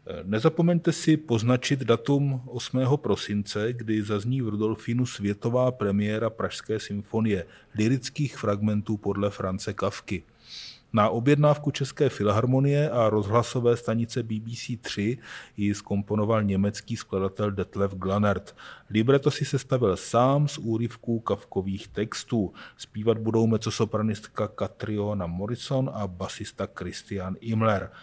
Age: 30-49